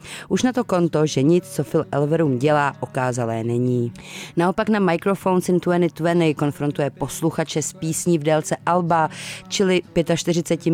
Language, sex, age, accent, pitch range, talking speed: Czech, female, 30-49, native, 140-170 Hz, 145 wpm